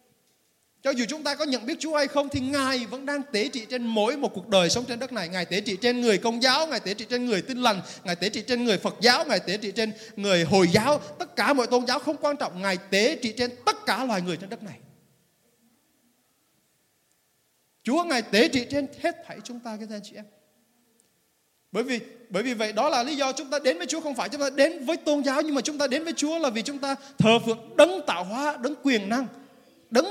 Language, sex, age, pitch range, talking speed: Vietnamese, male, 20-39, 195-265 Hz, 255 wpm